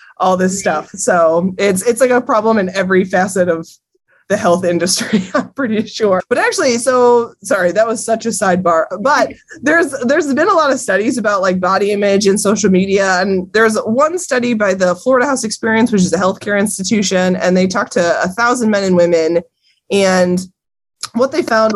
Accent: American